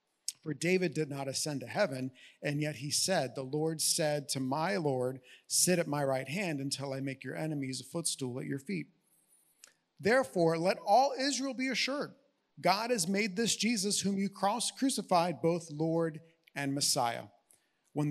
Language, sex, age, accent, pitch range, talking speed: English, male, 40-59, American, 140-185 Hz, 170 wpm